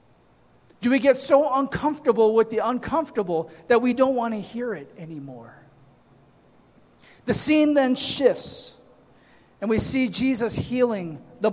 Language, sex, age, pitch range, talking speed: English, male, 40-59, 210-270 Hz, 135 wpm